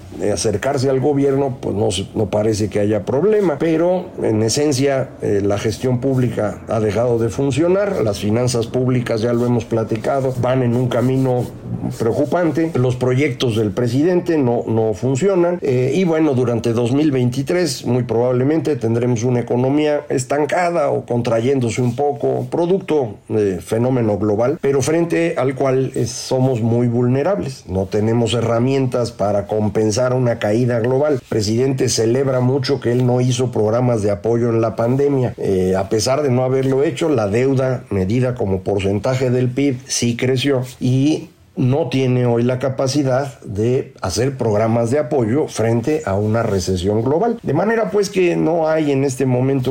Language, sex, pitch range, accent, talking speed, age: Spanish, male, 110-140 Hz, Mexican, 155 wpm, 50-69